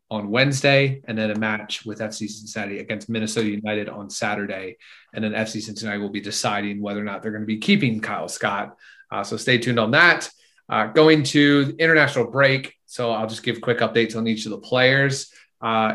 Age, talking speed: 30-49, 205 wpm